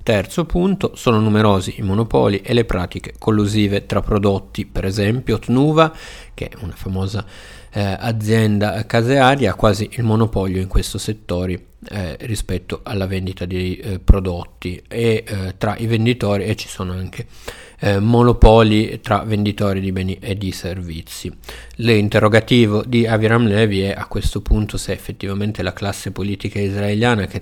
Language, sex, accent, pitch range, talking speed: Italian, male, native, 95-115 Hz, 150 wpm